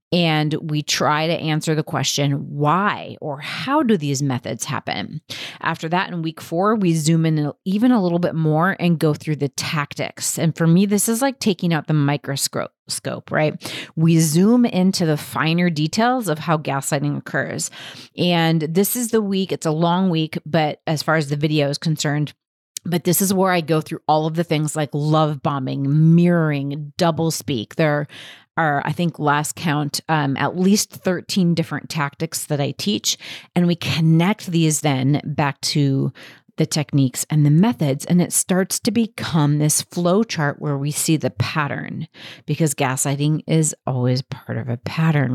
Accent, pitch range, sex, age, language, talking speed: American, 145-175 Hz, female, 30-49, English, 175 wpm